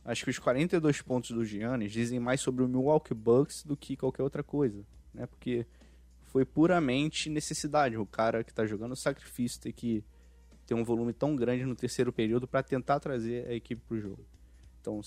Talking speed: 190 wpm